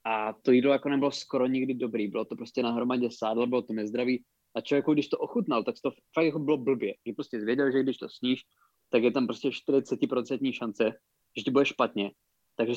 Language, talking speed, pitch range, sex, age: Czech, 210 wpm, 120-145 Hz, male, 20-39